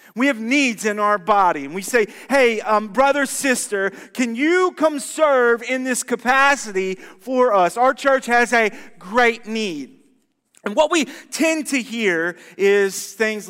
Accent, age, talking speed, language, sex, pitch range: American, 30-49, 160 wpm, English, male, 210-275 Hz